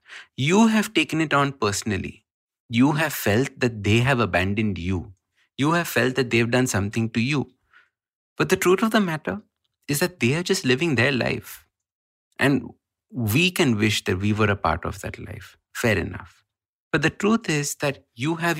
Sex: male